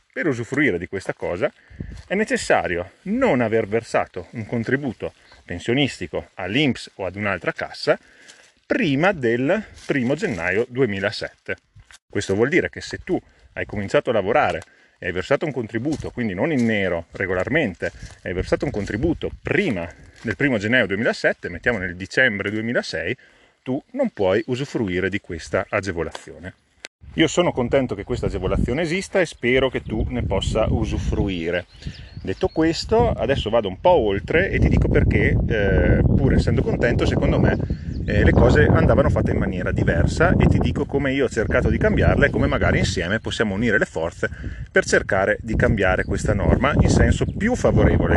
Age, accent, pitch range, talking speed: 40-59, native, 95-125 Hz, 160 wpm